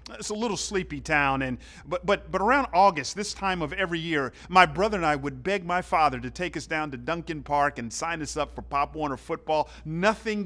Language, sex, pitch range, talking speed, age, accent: English, male, 155-225 Hz, 230 wpm, 40-59, American